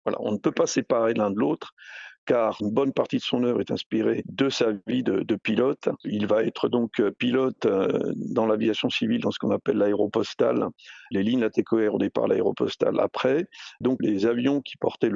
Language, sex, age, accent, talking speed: French, male, 50-69, French, 195 wpm